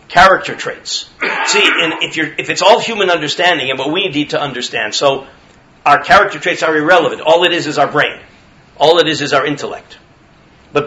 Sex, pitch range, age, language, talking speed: male, 145-190 Hz, 50-69, English, 200 wpm